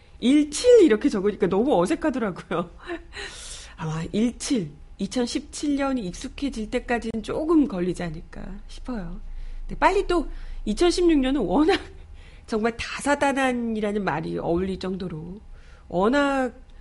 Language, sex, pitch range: Korean, female, 180-265 Hz